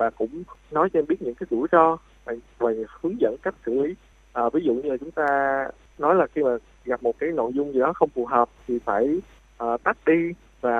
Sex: male